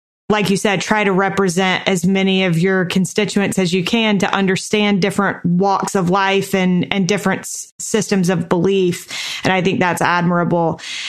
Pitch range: 185-210 Hz